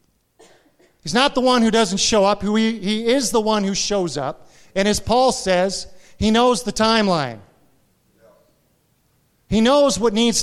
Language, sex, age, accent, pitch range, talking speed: English, male, 40-59, American, 190-245 Hz, 155 wpm